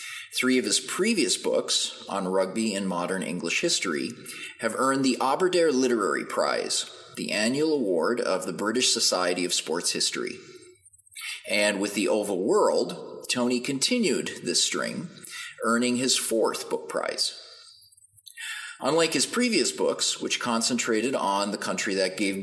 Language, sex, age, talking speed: English, male, 30-49, 140 wpm